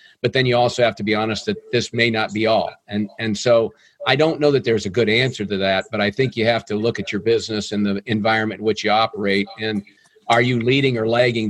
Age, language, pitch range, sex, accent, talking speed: 50-69, English, 105-125 Hz, male, American, 260 wpm